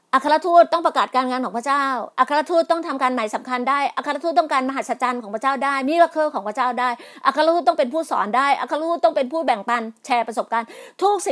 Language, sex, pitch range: Thai, female, 235-310 Hz